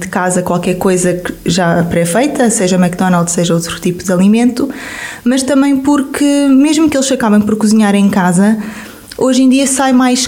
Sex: female